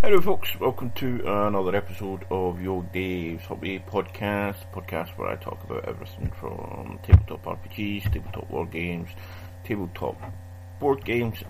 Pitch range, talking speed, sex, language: 90-95 Hz, 140 wpm, male, English